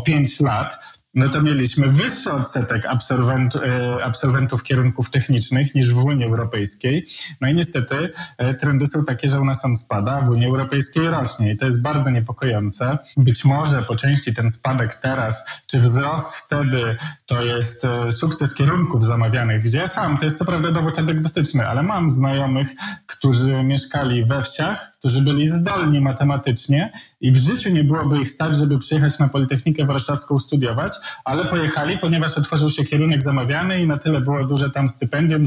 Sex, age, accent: male, 20-39, native